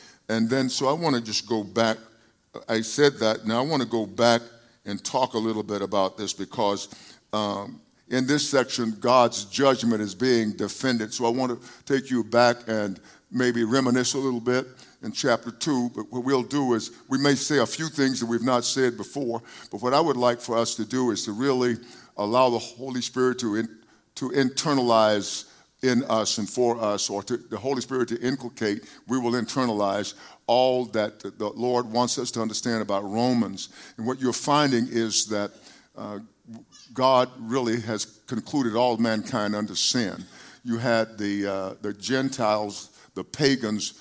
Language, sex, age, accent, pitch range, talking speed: English, male, 50-69, American, 110-130 Hz, 185 wpm